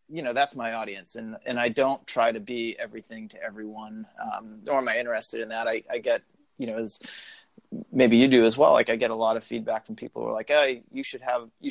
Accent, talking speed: American, 255 wpm